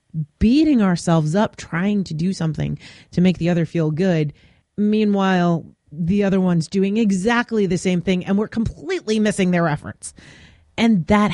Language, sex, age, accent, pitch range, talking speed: English, female, 30-49, American, 155-225 Hz, 160 wpm